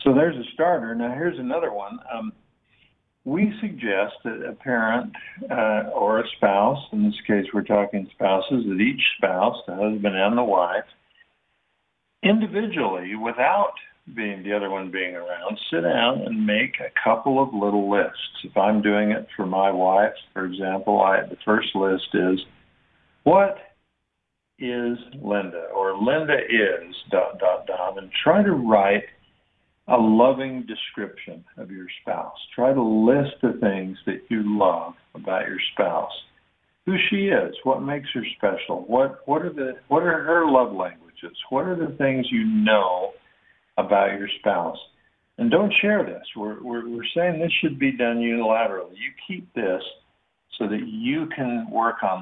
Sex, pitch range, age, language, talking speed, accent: male, 100-145 Hz, 50-69, English, 160 wpm, American